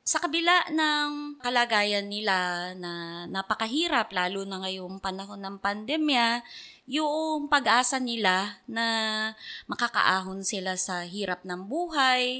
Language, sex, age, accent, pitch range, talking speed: Filipino, female, 20-39, native, 190-245 Hz, 110 wpm